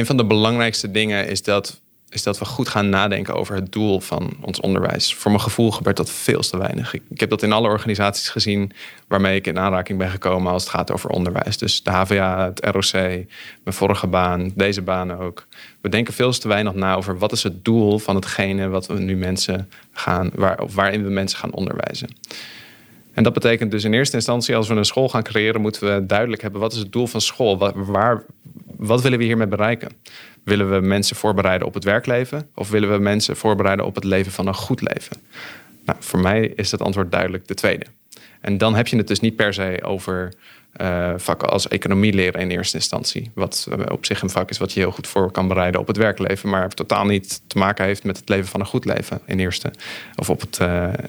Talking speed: 225 wpm